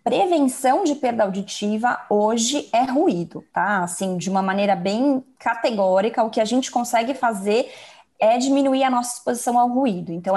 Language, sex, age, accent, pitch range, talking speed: Portuguese, female, 20-39, Brazilian, 205-255 Hz, 160 wpm